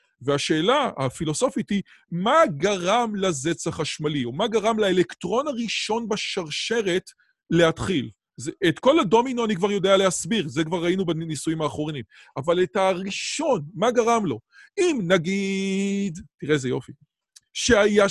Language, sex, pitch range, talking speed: Hebrew, male, 155-225 Hz, 130 wpm